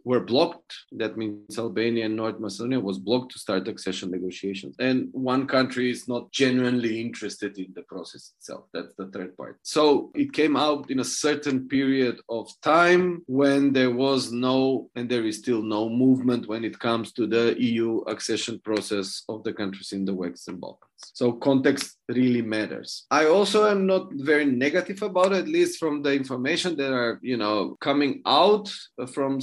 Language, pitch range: Turkish, 115-145 Hz